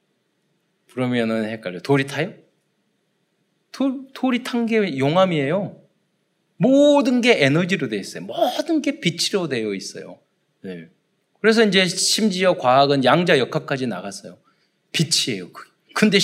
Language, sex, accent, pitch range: Korean, male, native, 140-220 Hz